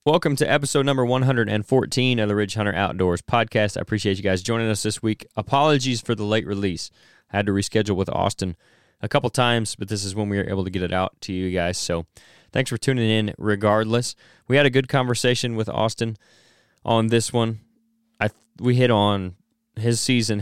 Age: 20-39